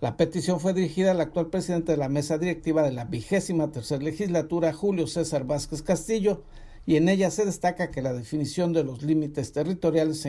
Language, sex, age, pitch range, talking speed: Spanish, male, 50-69, 145-180 Hz, 190 wpm